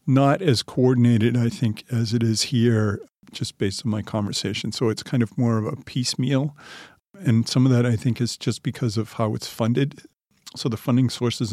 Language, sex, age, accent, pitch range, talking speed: Finnish, male, 50-69, American, 110-125 Hz, 205 wpm